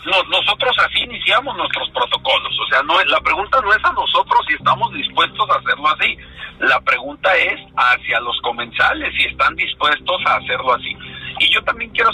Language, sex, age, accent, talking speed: Spanish, male, 50-69, Mexican, 175 wpm